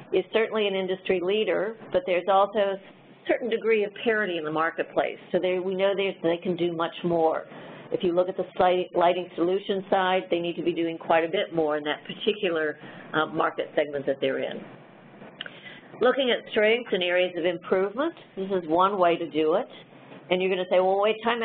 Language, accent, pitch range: English, American, 170-210 Hz